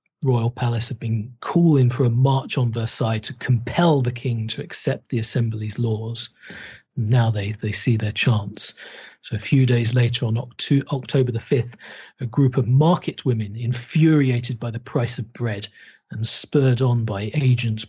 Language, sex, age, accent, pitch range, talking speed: English, male, 40-59, British, 115-135 Hz, 170 wpm